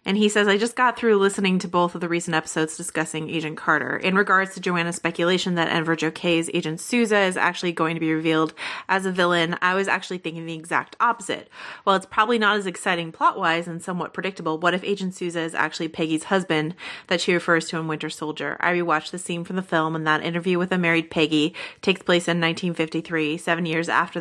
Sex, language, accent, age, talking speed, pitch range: female, English, American, 30-49, 220 wpm, 160-195 Hz